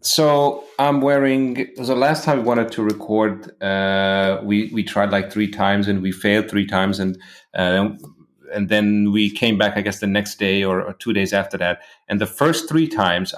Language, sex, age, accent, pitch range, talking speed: English, male, 30-49, German, 95-110 Hz, 210 wpm